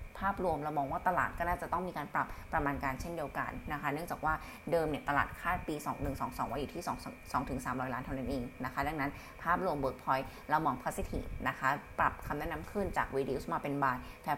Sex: female